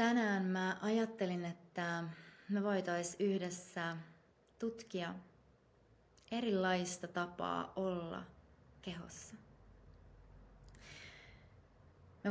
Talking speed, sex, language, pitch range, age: 65 wpm, female, Finnish, 130-200 Hz, 20-39